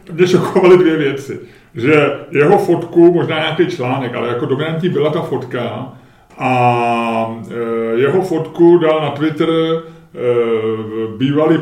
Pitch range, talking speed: 130-165 Hz, 130 wpm